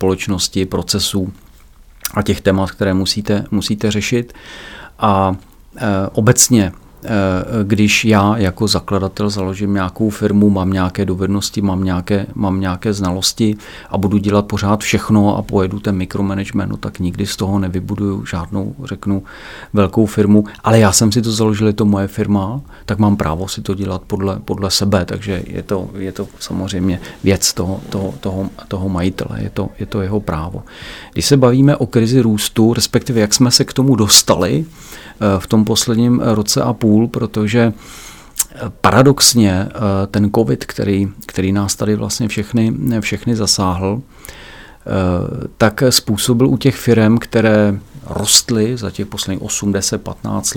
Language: Czech